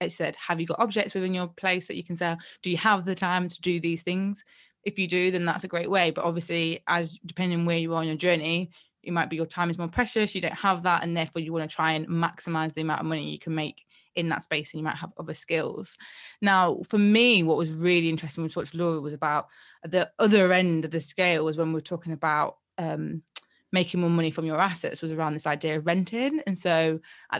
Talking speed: 255 wpm